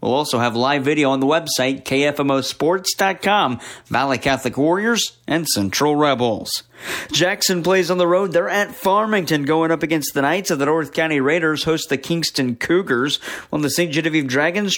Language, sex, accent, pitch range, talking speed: English, male, American, 135-180 Hz, 170 wpm